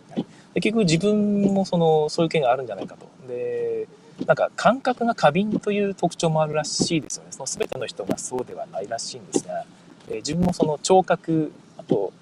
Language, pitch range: Japanese, 160-220 Hz